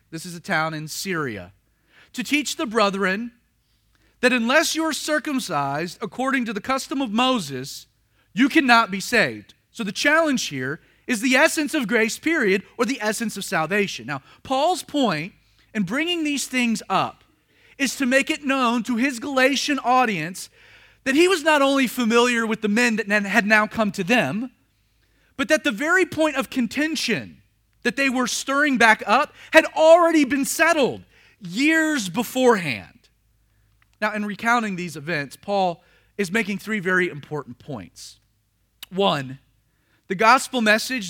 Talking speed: 155 wpm